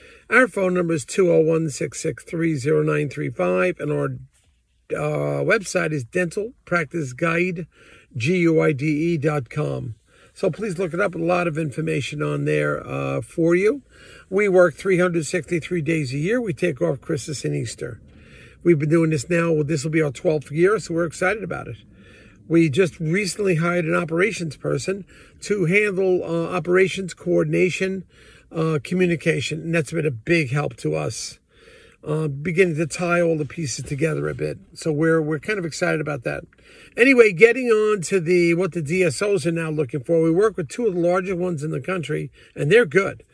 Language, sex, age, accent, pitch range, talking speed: English, male, 50-69, American, 155-185 Hz, 165 wpm